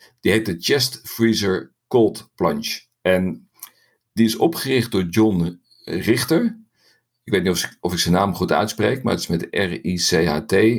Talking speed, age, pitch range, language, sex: 155 wpm, 50-69, 90-115 Hz, Dutch, male